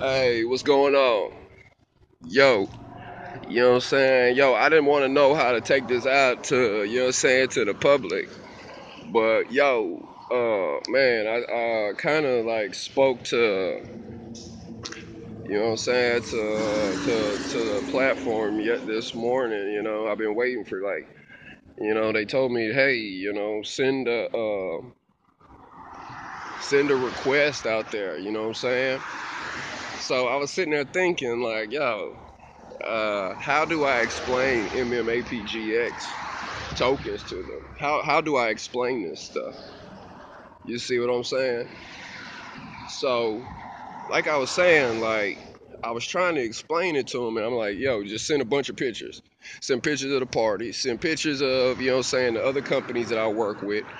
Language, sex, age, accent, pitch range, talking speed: English, male, 20-39, American, 115-140 Hz, 170 wpm